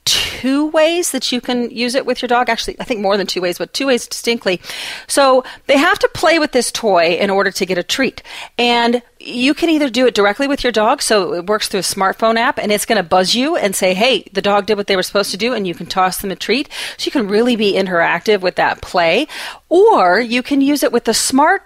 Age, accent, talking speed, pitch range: 40-59, American, 260 wpm, 200-265 Hz